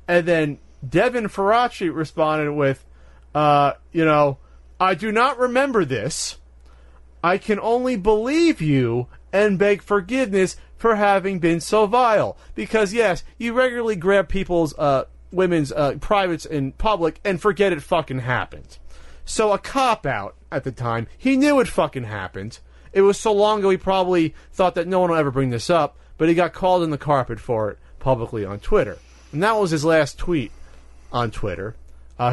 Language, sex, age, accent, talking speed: English, male, 30-49, American, 170 wpm